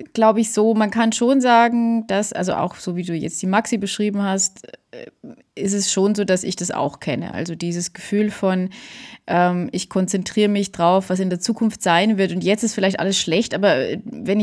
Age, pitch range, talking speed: 20-39, 180-220 Hz, 210 wpm